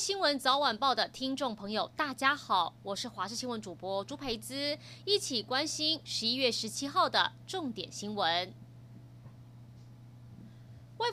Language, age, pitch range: Chinese, 20-39, 210-330 Hz